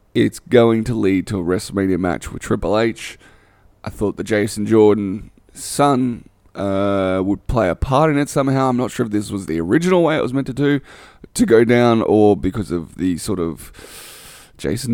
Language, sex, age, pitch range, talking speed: English, male, 20-39, 100-135 Hz, 195 wpm